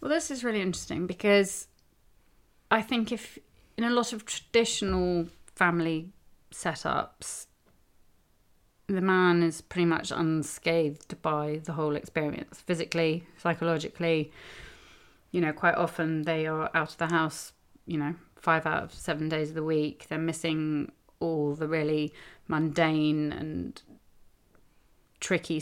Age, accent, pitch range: 30-49, British, 155-180 Hz